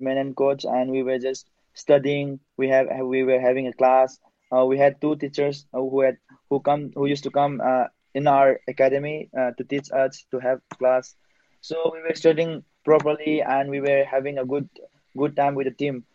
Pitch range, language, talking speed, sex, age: 130-150 Hz, English, 205 wpm, male, 20-39